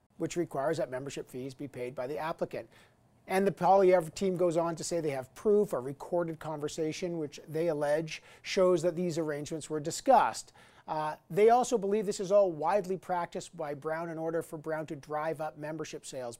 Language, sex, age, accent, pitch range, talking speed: English, male, 50-69, American, 155-200 Hz, 195 wpm